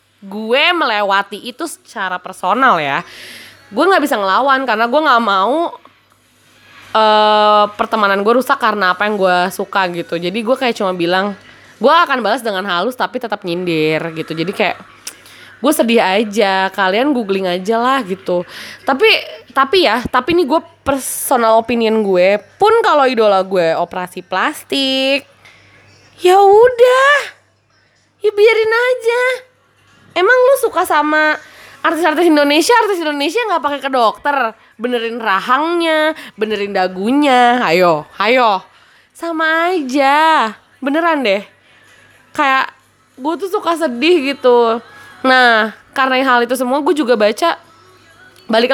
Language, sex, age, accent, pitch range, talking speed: Indonesian, female, 20-39, native, 210-320 Hz, 130 wpm